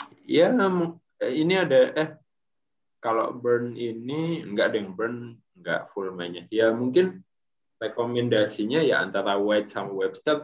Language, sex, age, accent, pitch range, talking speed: Indonesian, male, 20-39, native, 110-145 Hz, 125 wpm